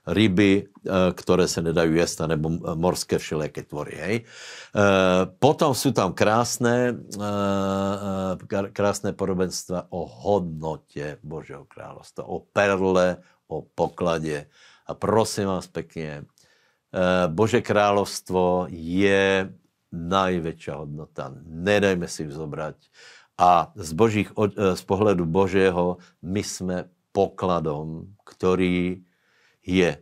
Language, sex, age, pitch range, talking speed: Slovak, male, 60-79, 90-105 Hz, 90 wpm